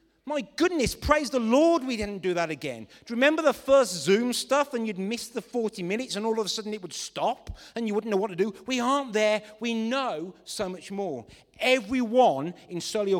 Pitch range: 165-240 Hz